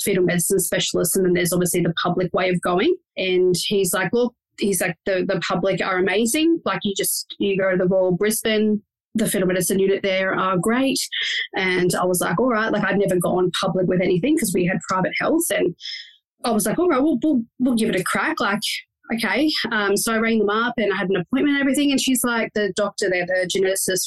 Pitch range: 190-255 Hz